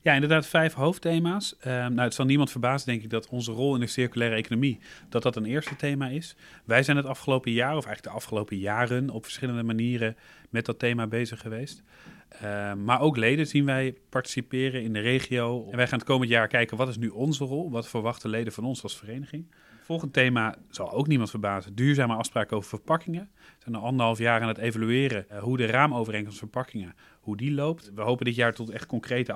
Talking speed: 215 wpm